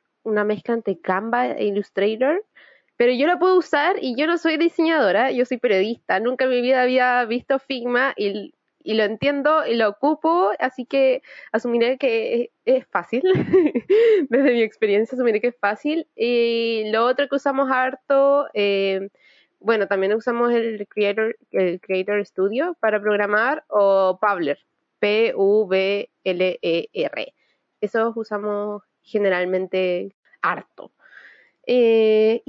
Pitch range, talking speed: 205-275 Hz, 145 wpm